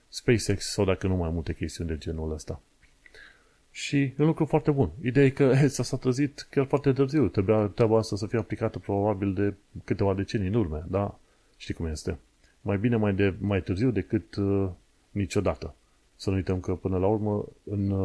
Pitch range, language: 90-110 Hz, Romanian